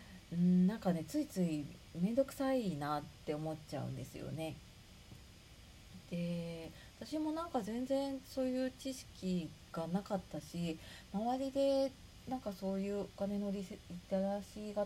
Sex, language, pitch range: female, Japanese, 155-215 Hz